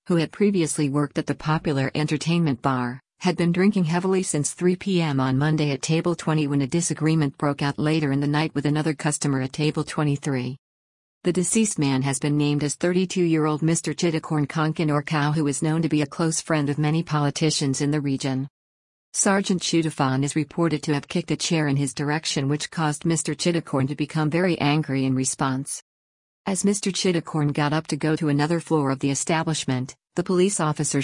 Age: 50-69